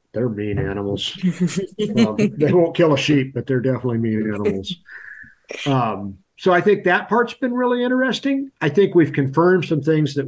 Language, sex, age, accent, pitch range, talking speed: English, male, 50-69, American, 115-145 Hz, 170 wpm